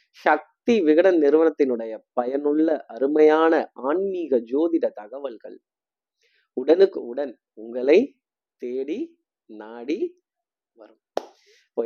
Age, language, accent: 20-39, Tamil, native